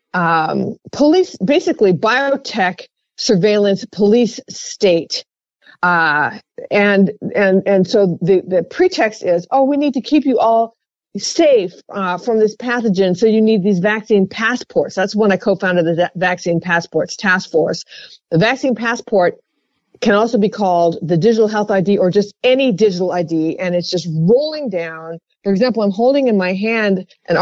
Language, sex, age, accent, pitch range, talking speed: English, female, 50-69, American, 185-240 Hz, 160 wpm